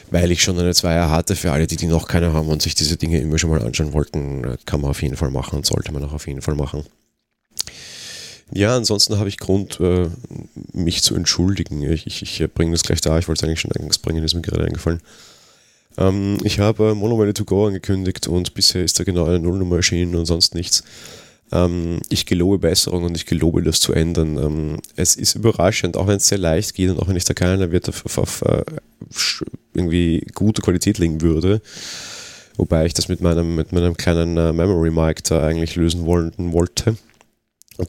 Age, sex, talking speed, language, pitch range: 30-49, male, 200 wpm, German, 85-105 Hz